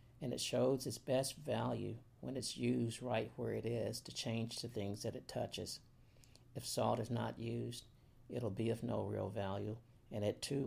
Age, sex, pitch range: 50-69, male, 115-125 Hz